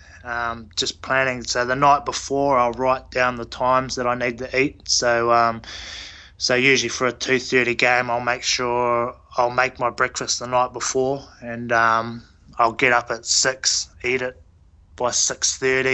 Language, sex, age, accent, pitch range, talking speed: English, male, 20-39, Australian, 110-125 Hz, 170 wpm